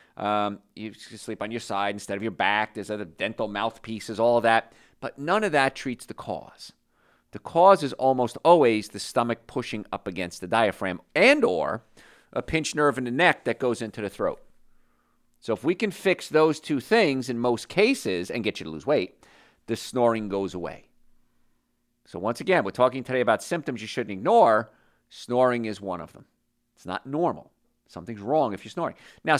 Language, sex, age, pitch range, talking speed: English, male, 50-69, 105-130 Hz, 190 wpm